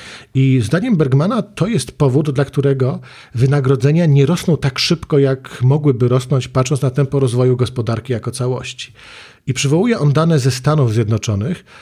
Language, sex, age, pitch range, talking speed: Polish, male, 40-59, 125-145 Hz, 150 wpm